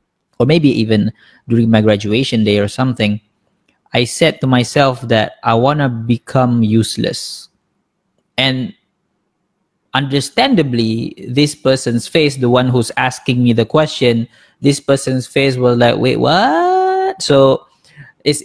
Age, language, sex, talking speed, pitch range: 20-39, Malay, male, 130 wpm, 115-140 Hz